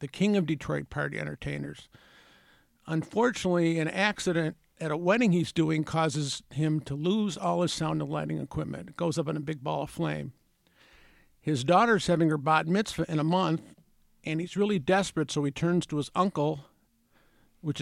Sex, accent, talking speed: male, American, 180 wpm